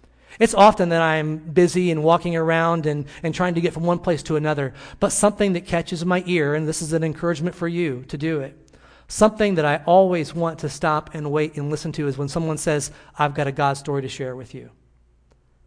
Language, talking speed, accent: English, 225 wpm, American